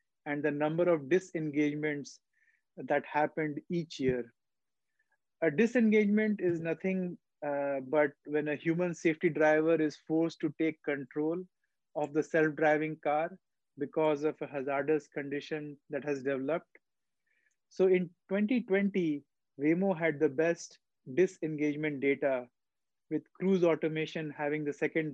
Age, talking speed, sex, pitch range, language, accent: 30-49, 125 wpm, male, 150-180 Hz, English, Indian